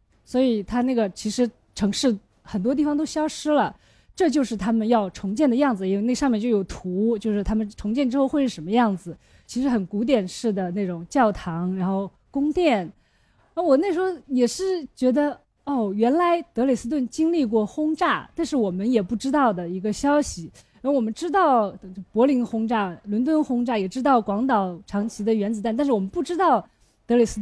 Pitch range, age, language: 205-285 Hz, 20-39, Chinese